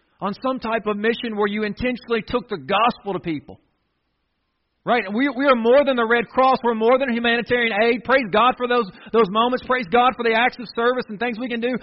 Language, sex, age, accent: English, male, 40-59, American